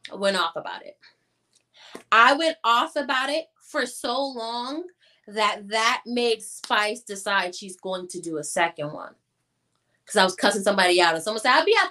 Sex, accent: female, American